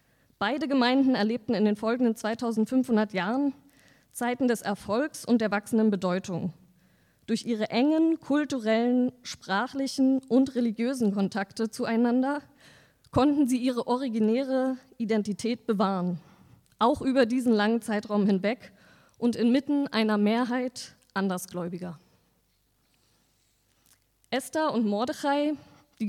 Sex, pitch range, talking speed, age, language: female, 200-250 Hz, 105 wpm, 20-39, German